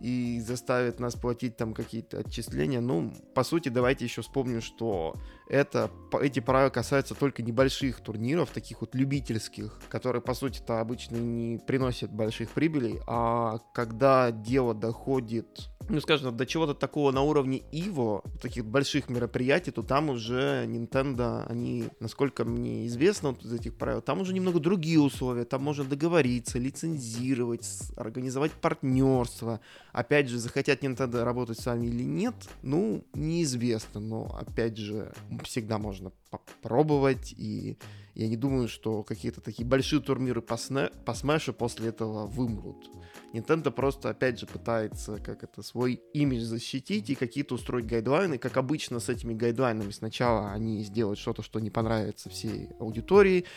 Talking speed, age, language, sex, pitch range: 145 wpm, 20-39, Russian, male, 115-135 Hz